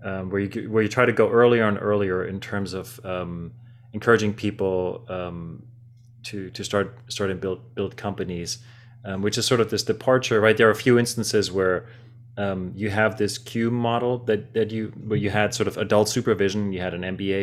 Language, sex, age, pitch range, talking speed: English, male, 30-49, 95-120 Hz, 205 wpm